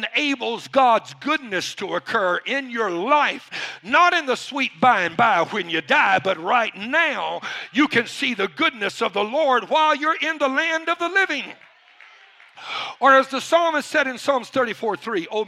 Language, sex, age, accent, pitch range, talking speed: English, male, 60-79, American, 145-230 Hz, 175 wpm